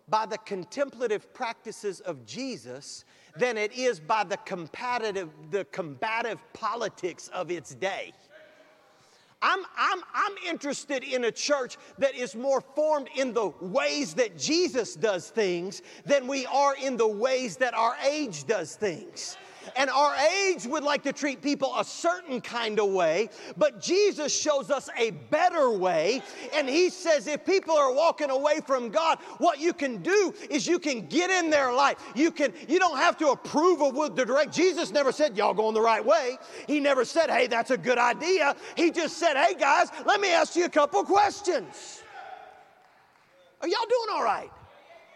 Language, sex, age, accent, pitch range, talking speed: English, male, 40-59, American, 235-335 Hz, 175 wpm